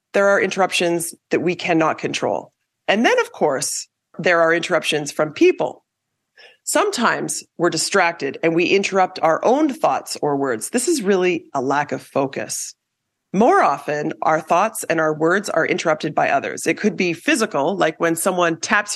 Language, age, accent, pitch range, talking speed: English, 40-59, American, 160-225 Hz, 170 wpm